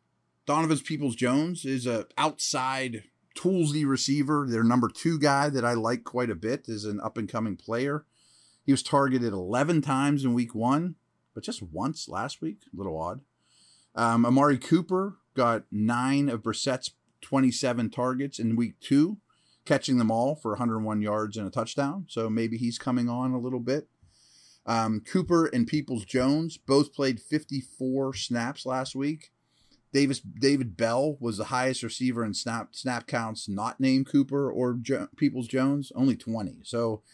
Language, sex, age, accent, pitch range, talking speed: English, male, 30-49, American, 105-140 Hz, 155 wpm